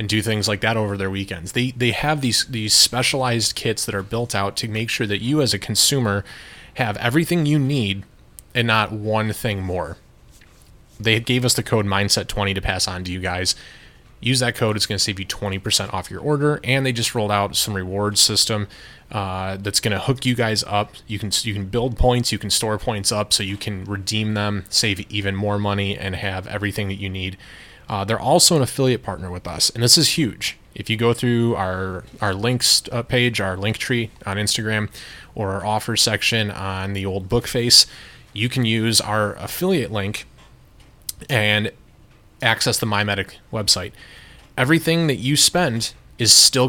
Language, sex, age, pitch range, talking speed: English, male, 20-39, 100-120 Hz, 195 wpm